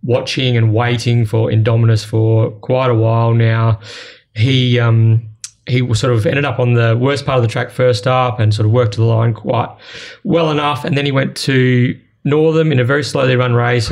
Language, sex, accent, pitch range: English, male, Australian, 115-135 Hz